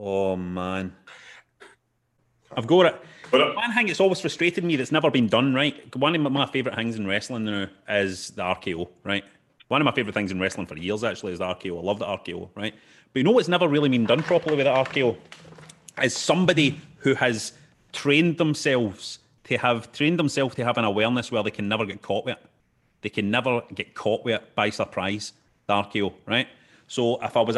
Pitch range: 100-125 Hz